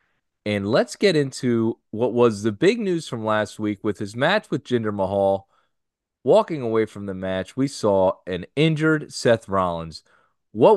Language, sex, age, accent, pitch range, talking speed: English, male, 30-49, American, 100-130 Hz, 165 wpm